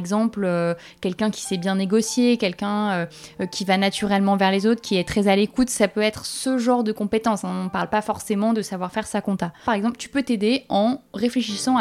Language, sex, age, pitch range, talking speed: French, female, 20-39, 195-230 Hz, 230 wpm